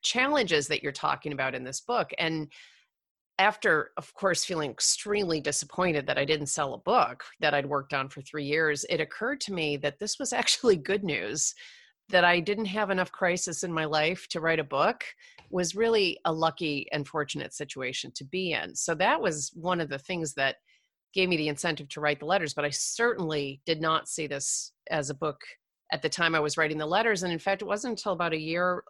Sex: female